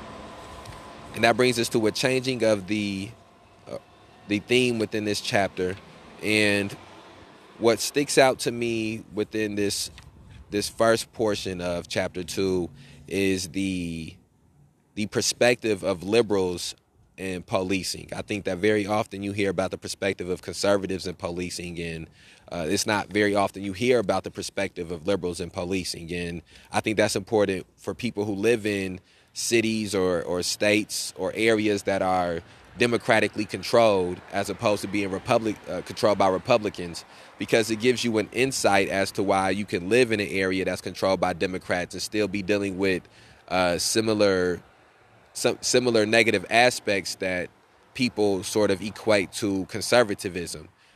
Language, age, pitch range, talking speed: English, 30-49, 90-110 Hz, 155 wpm